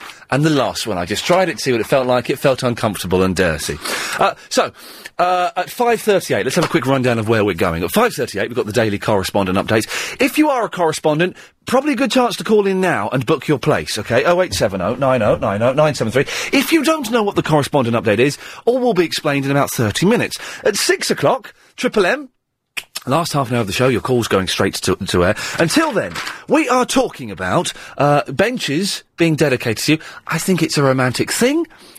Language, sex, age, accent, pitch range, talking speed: English, male, 40-59, British, 120-205 Hz, 215 wpm